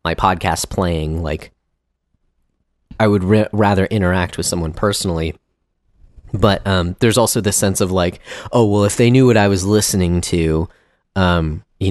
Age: 30-49